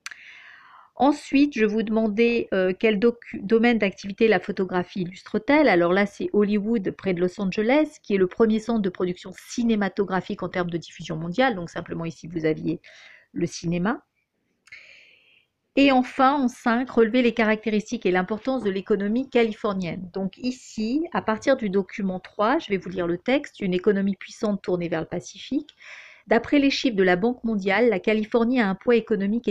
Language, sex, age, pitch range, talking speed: French, female, 40-59, 185-235 Hz, 180 wpm